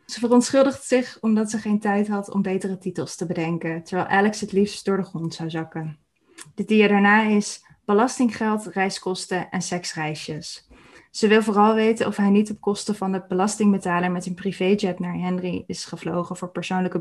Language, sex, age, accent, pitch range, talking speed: Dutch, female, 20-39, Dutch, 175-210 Hz, 180 wpm